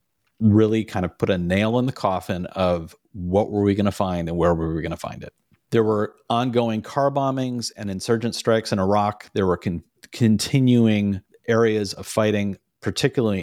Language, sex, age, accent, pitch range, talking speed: English, male, 40-59, American, 90-120 Hz, 190 wpm